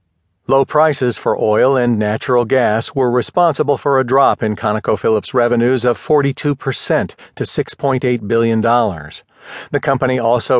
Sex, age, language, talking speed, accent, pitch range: male, 50-69, English, 130 wpm, American, 105-145 Hz